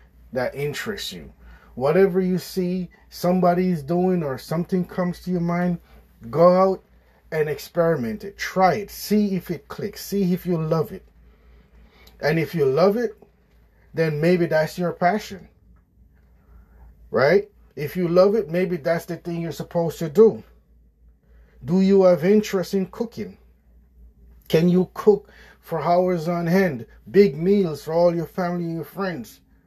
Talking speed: 155 wpm